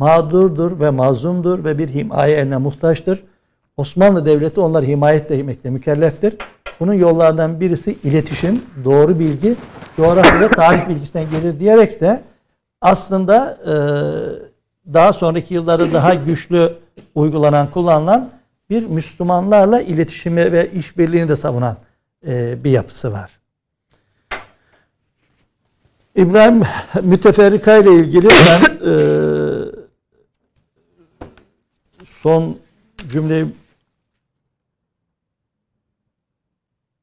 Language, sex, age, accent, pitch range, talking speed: Turkish, male, 60-79, native, 135-180 Hz, 90 wpm